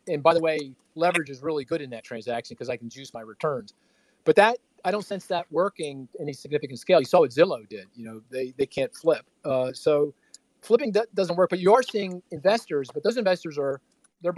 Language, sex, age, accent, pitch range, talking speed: English, male, 40-59, American, 135-170 Hz, 225 wpm